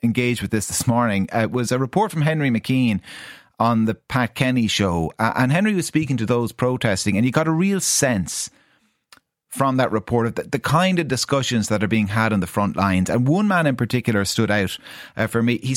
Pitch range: 105-130 Hz